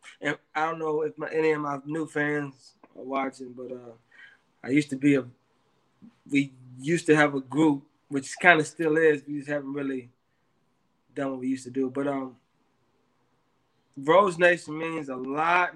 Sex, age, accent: male, 20-39, American